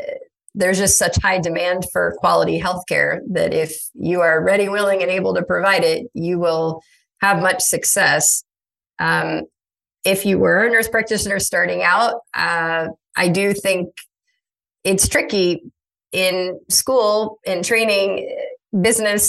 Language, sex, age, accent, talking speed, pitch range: English, female, 30-49, American, 135 wpm, 170-215 Hz